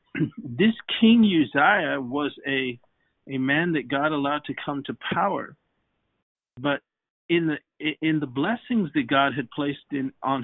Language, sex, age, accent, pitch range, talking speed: English, male, 40-59, American, 135-160 Hz, 150 wpm